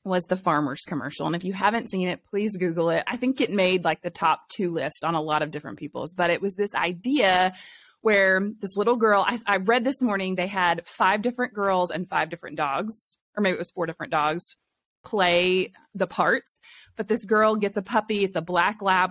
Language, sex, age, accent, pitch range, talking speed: English, female, 20-39, American, 180-225 Hz, 225 wpm